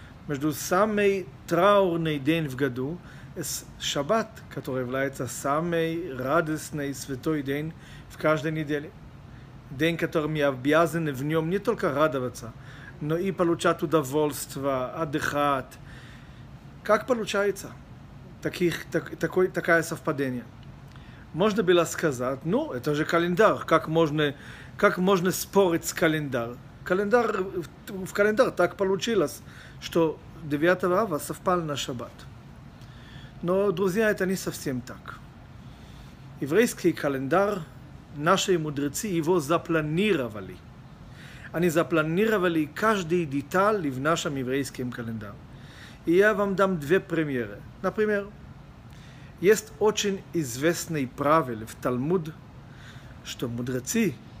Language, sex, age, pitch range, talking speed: Russian, male, 40-59, 135-180 Hz, 105 wpm